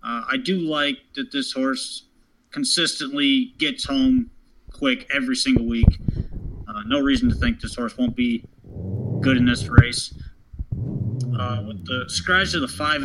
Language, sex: English, male